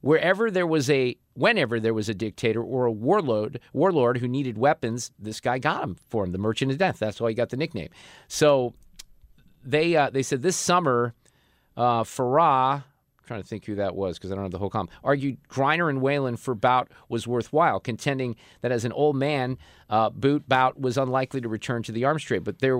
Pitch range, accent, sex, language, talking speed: 115-150 Hz, American, male, English, 210 wpm